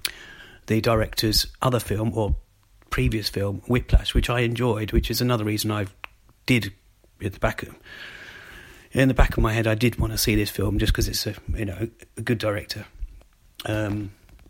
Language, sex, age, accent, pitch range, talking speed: English, male, 30-49, British, 105-120 Hz, 180 wpm